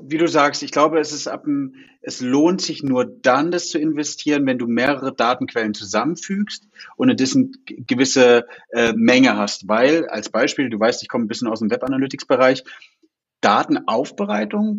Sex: male